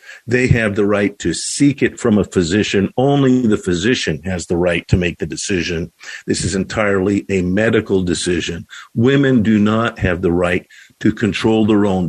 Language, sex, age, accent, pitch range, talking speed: English, male, 50-69, American, 105-135 Hz, 180 wpm